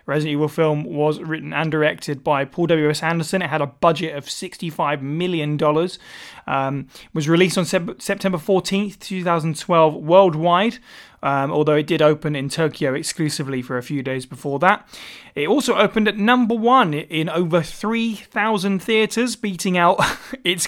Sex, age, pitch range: male, 20-39, 145-185 Hz